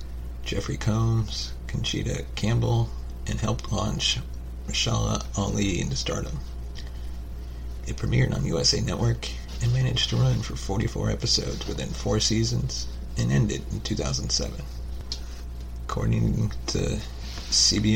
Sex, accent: male, American